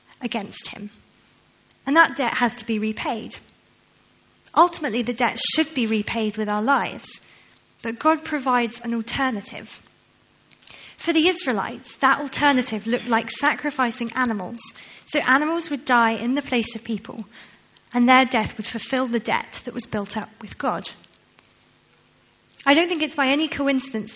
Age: 20-39